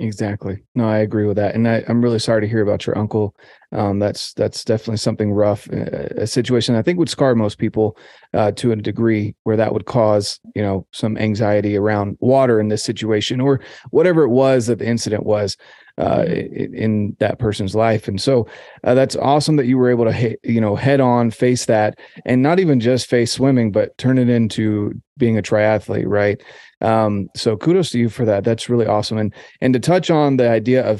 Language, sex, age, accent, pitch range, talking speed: English, male, 30-49, American, 105-125 Hz, 215 wpm